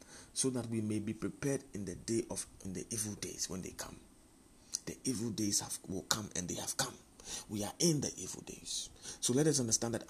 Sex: male